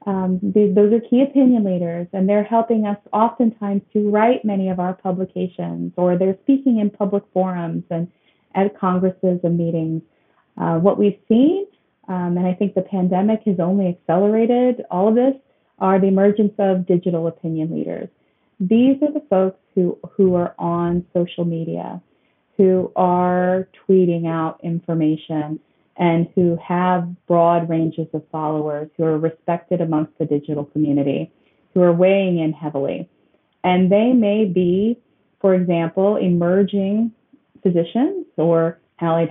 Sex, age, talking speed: female, 30-49, 145 wpm